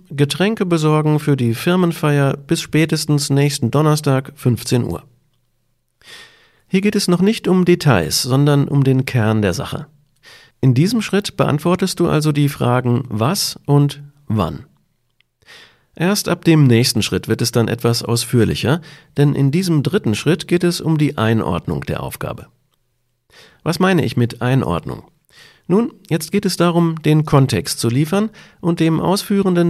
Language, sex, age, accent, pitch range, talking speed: German, male, 40-59, German, 125-170 Hz, 150 wpm